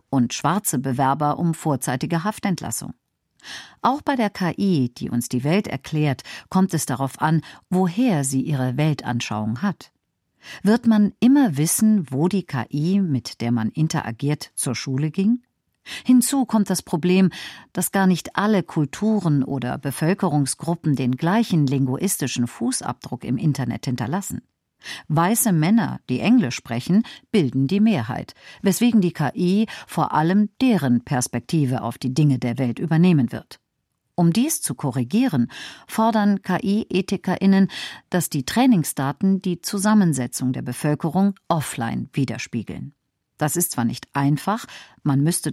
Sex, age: female, 50-69